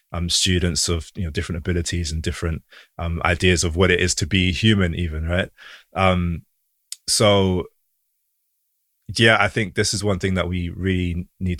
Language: English